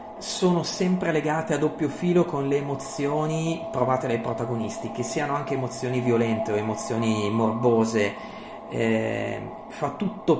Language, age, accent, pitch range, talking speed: Italian, 40-59, native, 115-155 Hz, 135 wpm